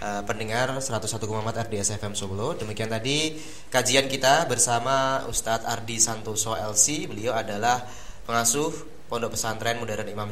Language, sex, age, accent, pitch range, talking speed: Indonesian, male, 20-39, native, 105-125 Hz, 130 wpm